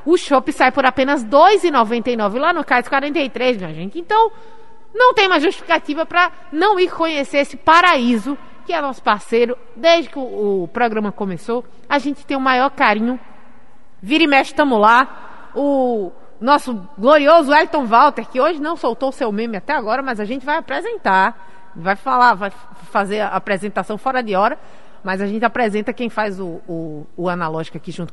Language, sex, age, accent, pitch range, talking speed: Portuguese, female, 30-49, Brazilian, 220-310 Hz, 185 wpm